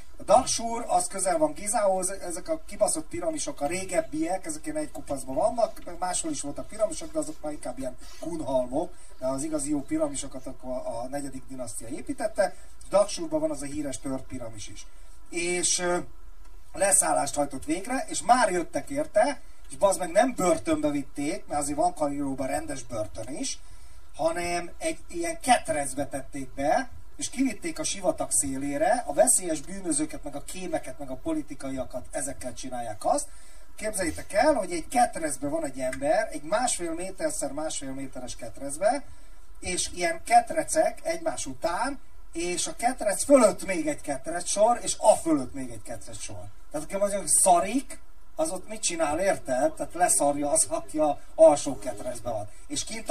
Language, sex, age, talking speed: Hungarian, male, 30-49, 160 wpm